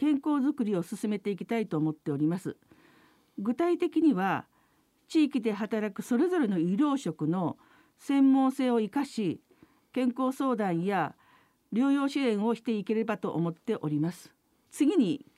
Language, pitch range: Japanese, 210-290 Hz